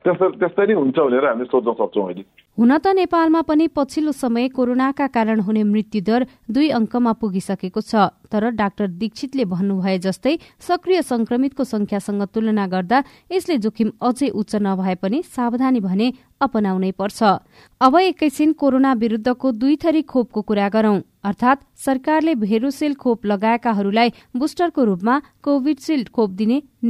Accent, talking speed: Indian, 105 wpm